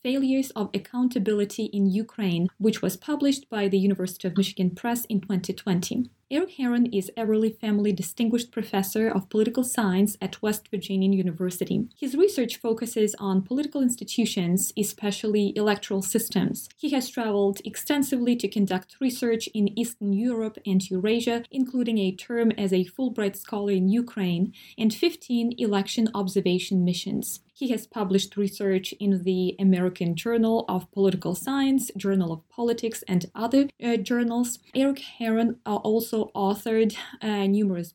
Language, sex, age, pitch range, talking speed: English, female, 20-39, 195-235 Hz, 140 wpm